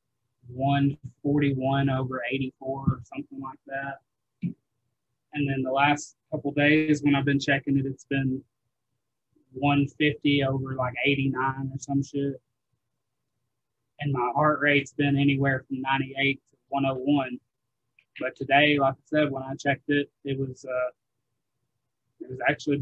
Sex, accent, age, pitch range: male, American, 20-39, 120-140 Hz